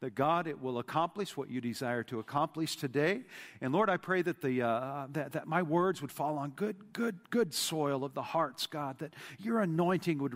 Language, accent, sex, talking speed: English, American, male, 210 wpm